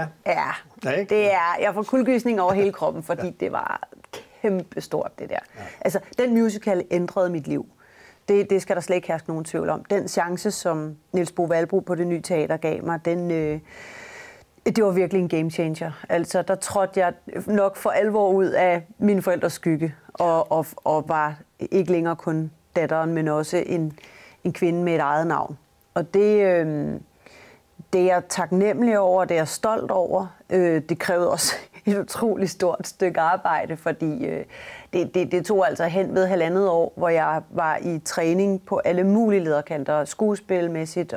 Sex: female